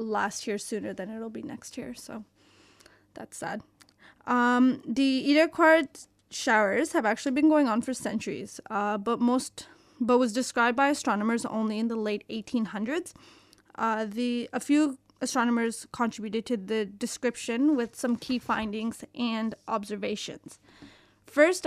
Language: English